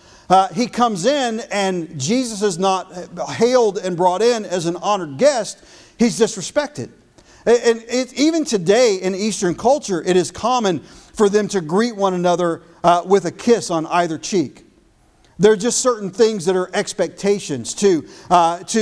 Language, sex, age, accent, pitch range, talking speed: English, male, 50-69, American, 165-200 Hz, 170 wpm